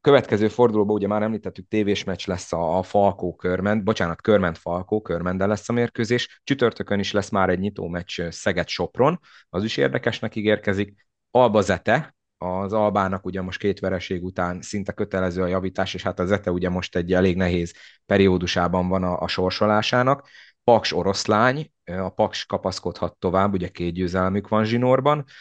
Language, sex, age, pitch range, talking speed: Hungarian, male, 30-49, 90-105 Hz, 150 wpm